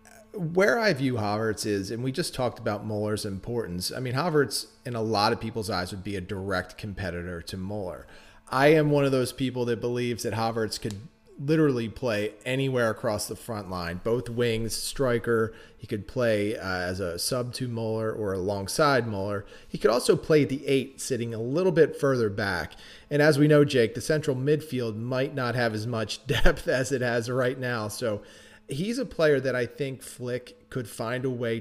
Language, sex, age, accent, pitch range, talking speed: English, male, 30-49, American, 110-130 Hz, 195 wpm